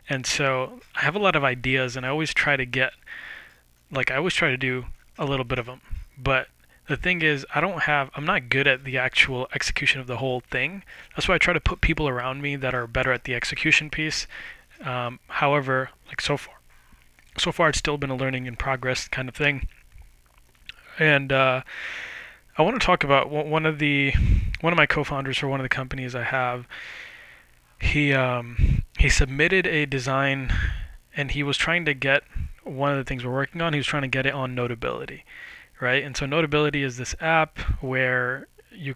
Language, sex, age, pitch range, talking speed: English, male, 20-39, 125-145 Hz, 205 wpm